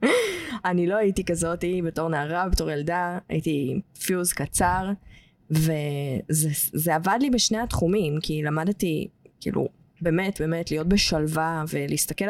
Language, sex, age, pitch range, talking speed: English, female, 20-39, 165-210 Hz, 140 wpm